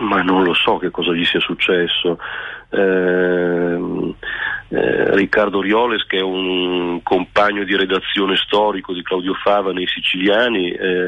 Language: Italian